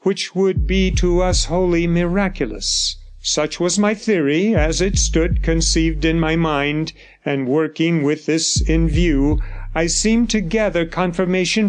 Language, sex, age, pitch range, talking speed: English, male, 50-69, 145-185 Hz, 150 wpm